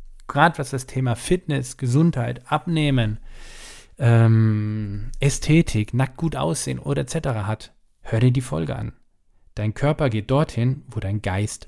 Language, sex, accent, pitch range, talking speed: German, male, German, 115-145 Hz, 140 wpm